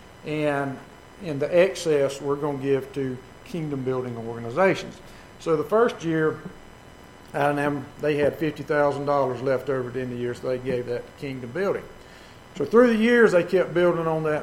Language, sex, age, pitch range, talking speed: English, male, 50-69, 130-170 Hz, 175 wpm